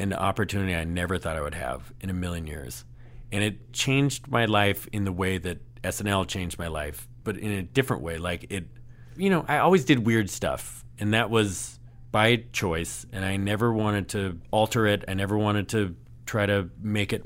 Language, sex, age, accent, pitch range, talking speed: English, male, 40-59, American, 100-125 Hz, 205 wpm